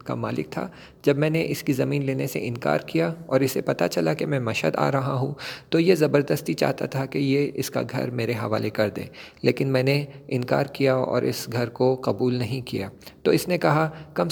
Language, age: English, 40-59